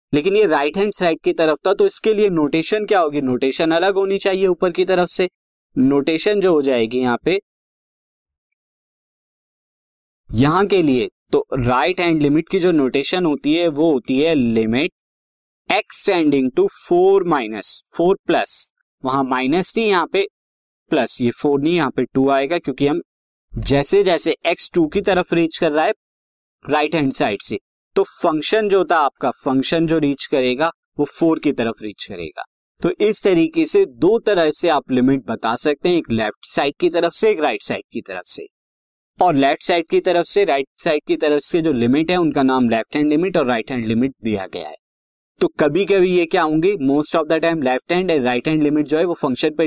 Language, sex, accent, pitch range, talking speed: Hindi, male, native, 135-185 Hz, 200 wpm